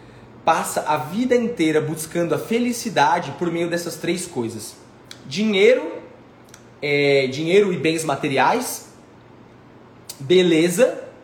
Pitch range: 150-200 Hz